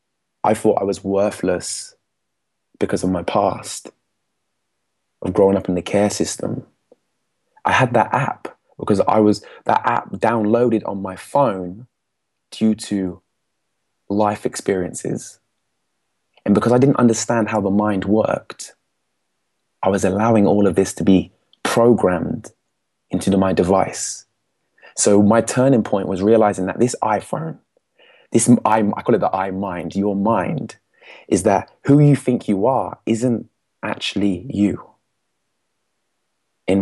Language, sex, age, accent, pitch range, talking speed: English, male, 20-39, British, 95-115 Hz, 135 wpm